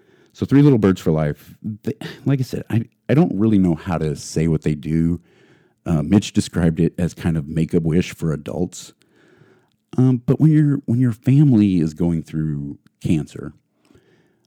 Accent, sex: American, male